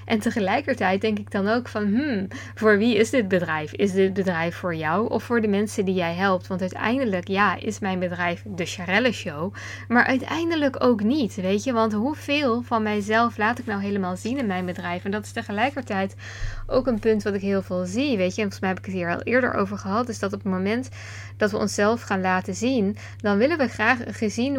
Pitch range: 185-225 Hz